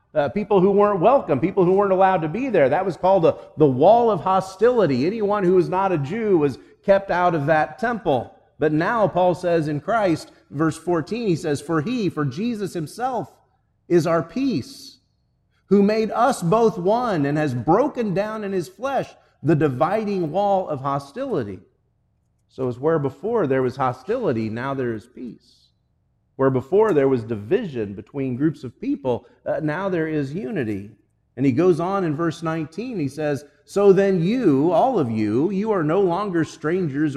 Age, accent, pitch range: 40-59, American, 130-190 Hz